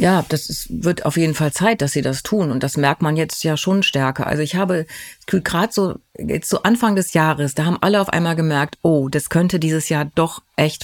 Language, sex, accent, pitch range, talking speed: German, female, German, 150-180 Hz, 225 wpm